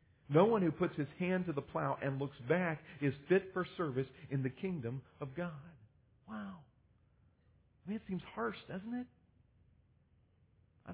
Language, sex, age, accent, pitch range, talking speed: English, male, 40-59, American, 130-190 Hz, 165 wpm